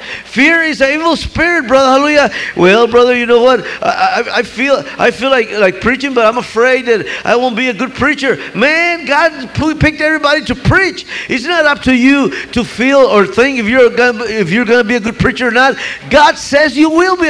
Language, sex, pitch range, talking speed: English, male, 240-295 Hz, 220 wpm